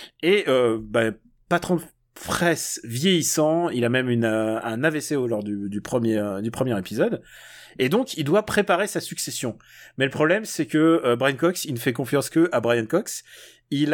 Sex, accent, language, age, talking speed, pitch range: male, French, French, 30-49, 190 wpm, 135-175 Hz